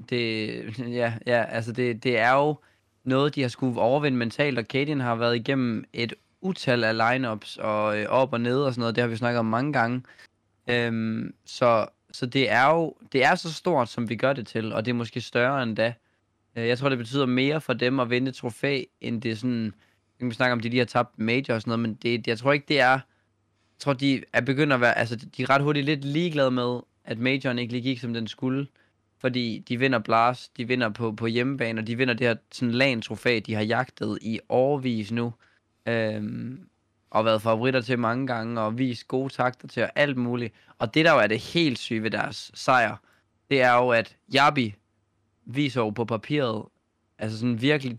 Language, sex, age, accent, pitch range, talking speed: Danish, male, 20-39, native, 115-130 Hz, 220 wpm